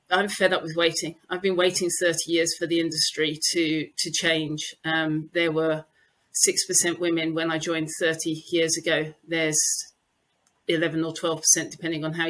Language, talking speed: English, 175 wpm